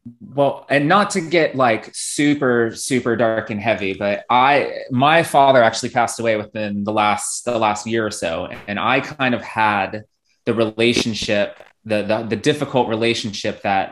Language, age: English, 20-39